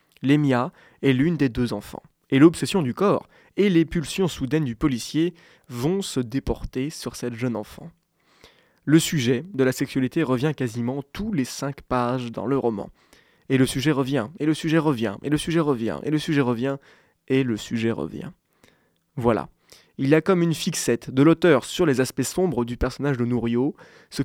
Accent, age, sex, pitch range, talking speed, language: French, 20-39, male, 125-165 Hz, 190 wpm, French